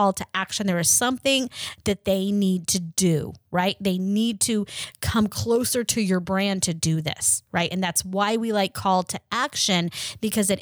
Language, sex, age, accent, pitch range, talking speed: English, female, 30-49, American, 175-225 Hz, 190 wpm